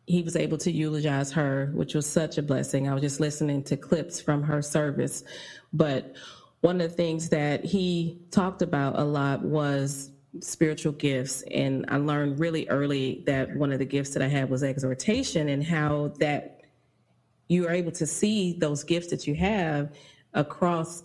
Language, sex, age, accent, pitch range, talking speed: English, female, 30-49, American, 140-170 Hz, 180 wpm